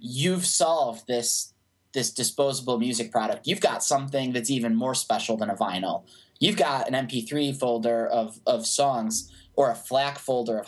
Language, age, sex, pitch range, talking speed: English, 20-39, male, 120-150 Hz, 170 wpm